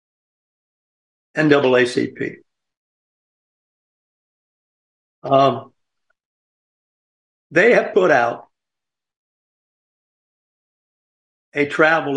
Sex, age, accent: male, 50-69, American